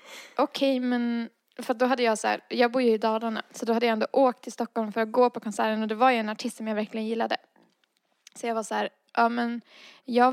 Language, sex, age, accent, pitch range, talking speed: Swedish, female, 20-39, native, 225-260 Hz, 260 wpm